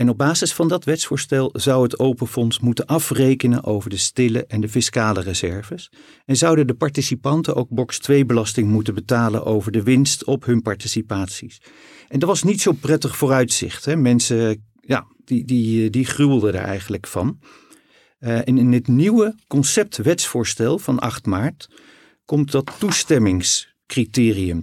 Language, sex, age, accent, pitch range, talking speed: Dutch, male, 50-69, Dutch, 110-140 Hz, 155 wpm